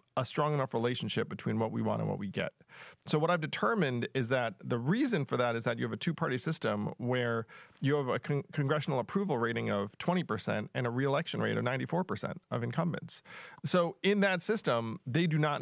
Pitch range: 120-165 Hz